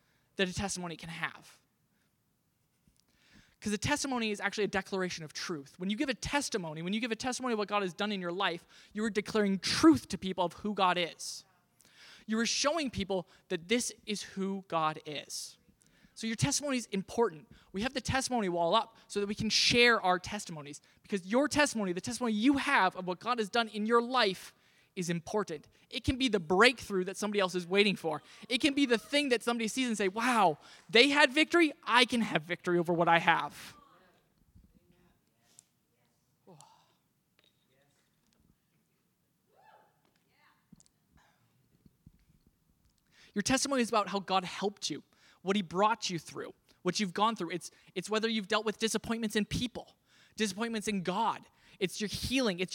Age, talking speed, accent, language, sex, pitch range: 20-39, 175 wpm, American, English, male, 185-235 Hz